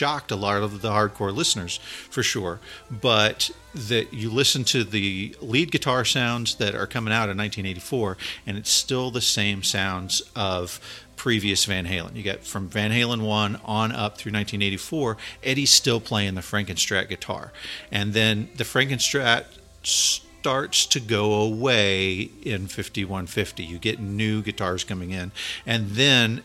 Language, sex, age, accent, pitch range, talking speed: English, male, 50-69, American, 105-135 Hz, 155 wpm